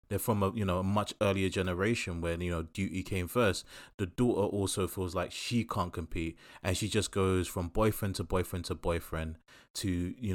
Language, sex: English, male